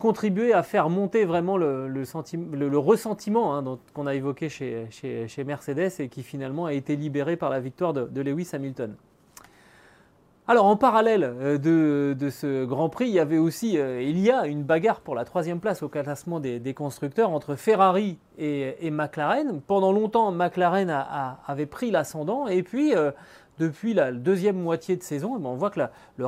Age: 30-49